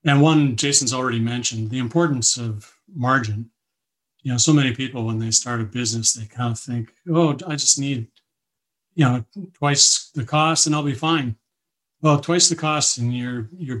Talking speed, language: 185 wpm, English